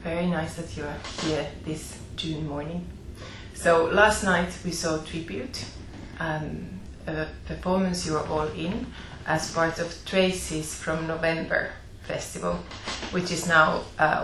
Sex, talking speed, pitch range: female, 140 wpm, 150-180 Hz